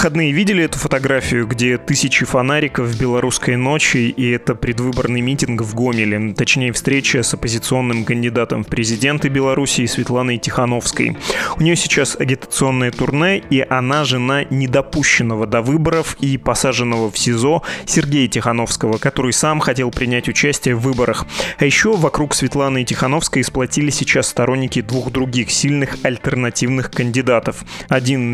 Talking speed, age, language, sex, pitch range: 140 wpm, 20-39, Russian, male, 125-145 Hz